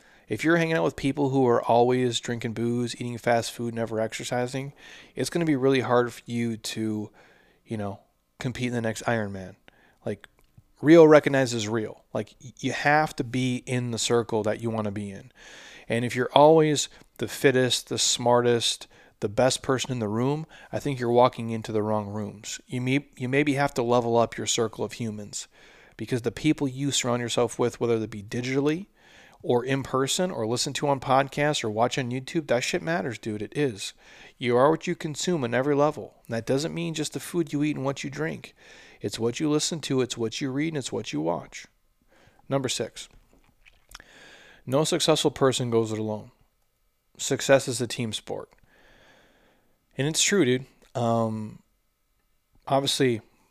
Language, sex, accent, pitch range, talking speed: English, male, American, 115-140 Hz, 185 wpm